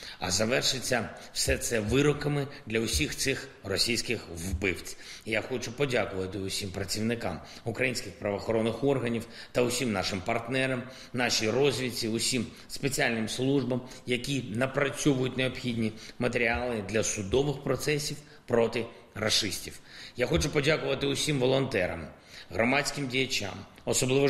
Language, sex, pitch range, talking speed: Ukrainian, male, 100-130 Hz, 110 wpm